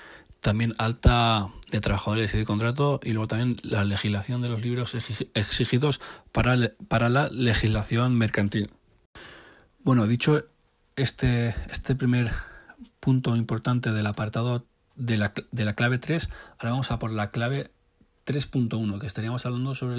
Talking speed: 145 wpm